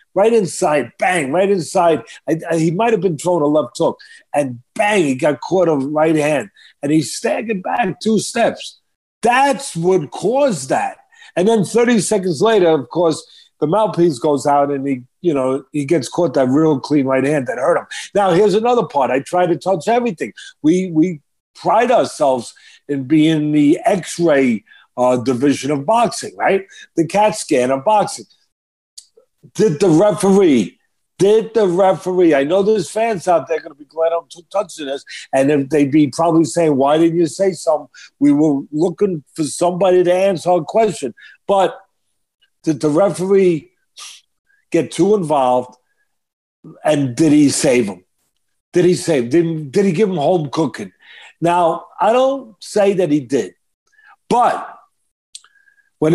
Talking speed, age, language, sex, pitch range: 165 wpm, 50-69, English, male, 150-210 Hz